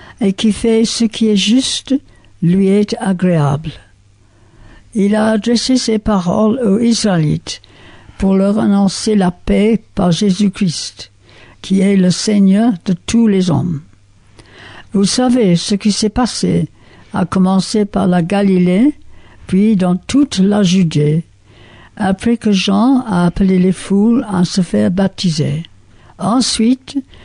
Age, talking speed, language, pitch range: 60-79, 135 wpm, French, 160-215 Hz